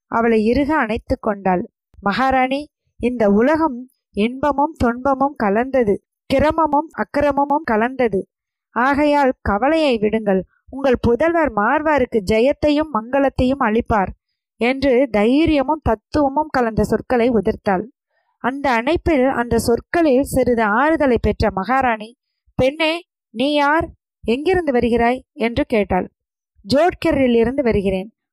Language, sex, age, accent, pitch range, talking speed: Tamil, female, 20-39, native, 225-285 Hz, 95 wpm